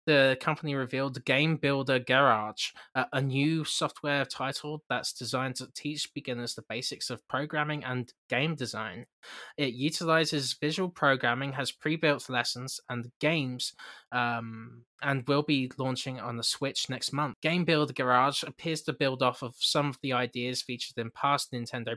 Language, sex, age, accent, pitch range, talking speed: English, male, 20-39, British, 120-145 Hz, 155 wpm